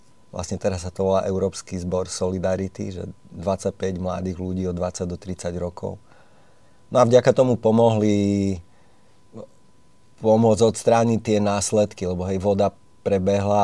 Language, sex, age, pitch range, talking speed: Slovak, male, 30-49, 95-105 Hz, 130 wpm